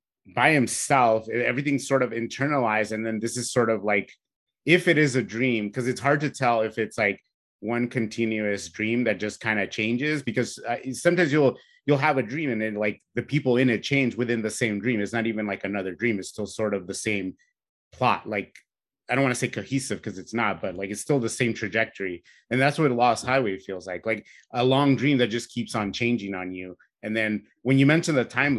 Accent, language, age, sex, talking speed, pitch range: American, English, 30-49, male, 230 wpm, 110-135 Hz